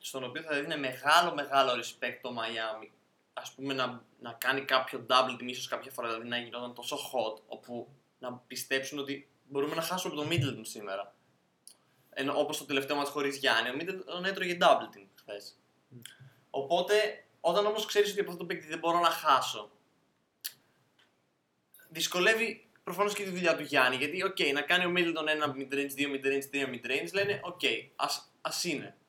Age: 20-39